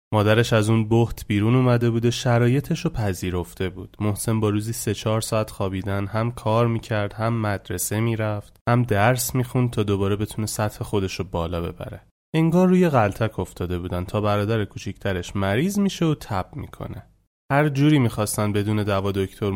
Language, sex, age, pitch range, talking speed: English, male, 20-39, 100-145 Hz, 160 wpm